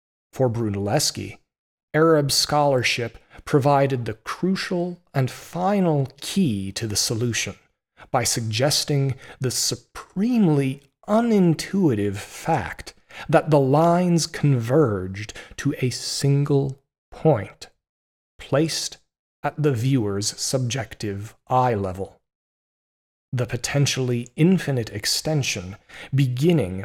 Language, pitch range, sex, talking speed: English, 115-155 Hz, male, 85 wpm